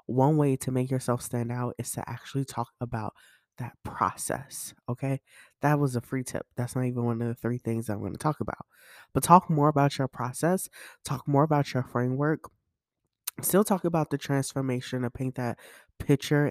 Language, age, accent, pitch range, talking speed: English, 20-39, American, 120-150 Hz, 195 wpm